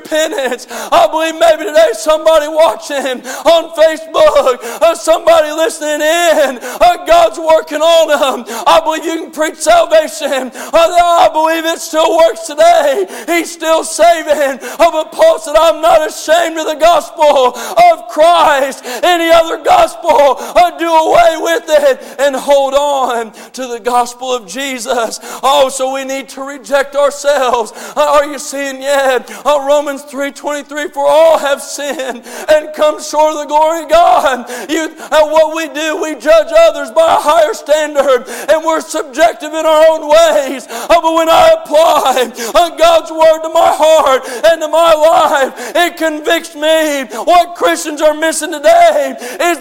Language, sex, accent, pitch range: English, male, American, 280-330 Hz